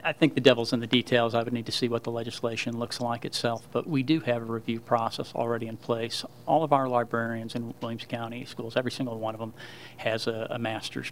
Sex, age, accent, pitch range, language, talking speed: male, 40-59, American, 115-125 Hz, English, 245 wpm